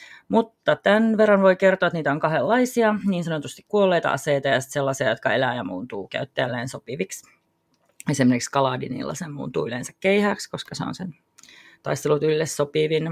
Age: 30-49